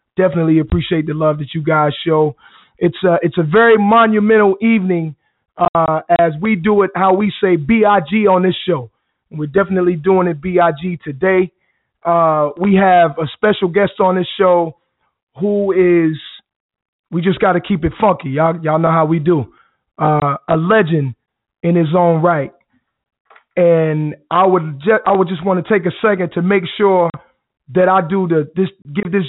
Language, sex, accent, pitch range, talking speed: English, male, American, 160-190 Hz, 180 wpm